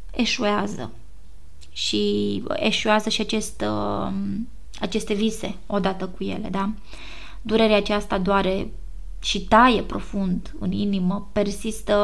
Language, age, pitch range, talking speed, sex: Romanian, 20-39, 190-215 Hz, 100 wpm, female